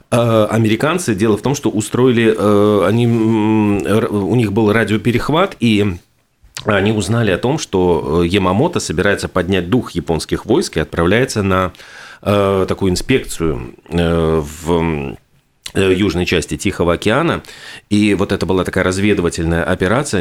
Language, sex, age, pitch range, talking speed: Russian, male, 30-49, 90-110 Hz, 120 wpm